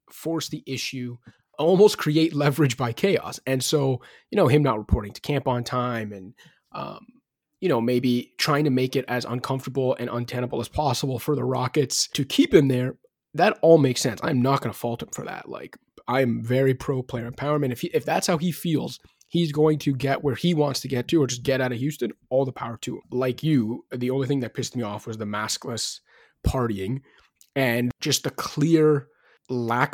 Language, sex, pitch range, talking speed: English, male, 120-150 Hz, 210 wpm